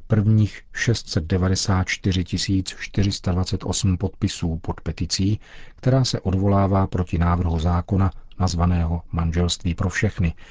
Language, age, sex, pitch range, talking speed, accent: Czech, 40-59, male, 90-100 Hz, 90 wpm, native